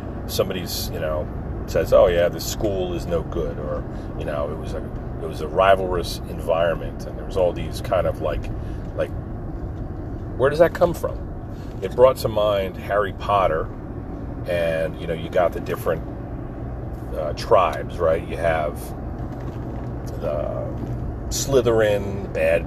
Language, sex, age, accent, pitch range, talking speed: English, male, 40-59, American, 90-110 Hz, 150 wpm